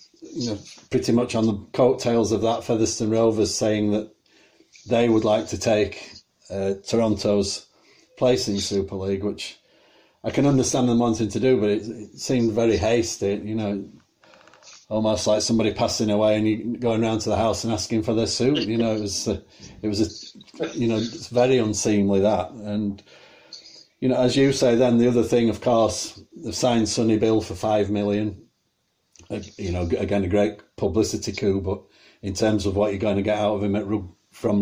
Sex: male